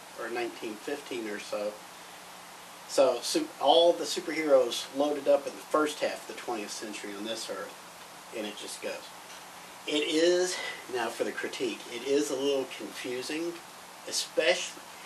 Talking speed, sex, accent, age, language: 145 wpm, male, American, 50-69, English